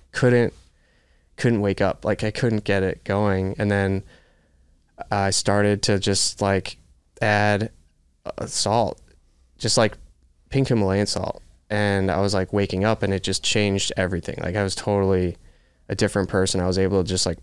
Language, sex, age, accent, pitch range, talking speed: English, male, 20-39, American, 90-110 Hz, 170 wpm